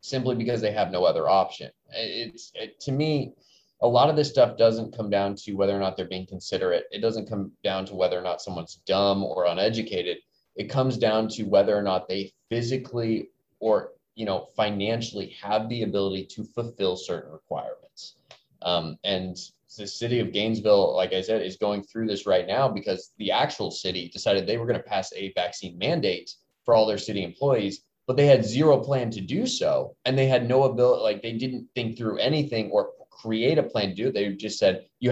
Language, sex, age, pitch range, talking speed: English, male, 20-39, 100-130 Hz, 205 wpm